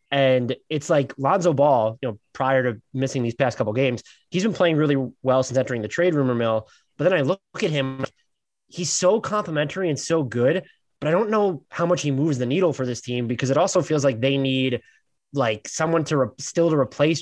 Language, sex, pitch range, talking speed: English, male, 120-150 Hz, 225 wpm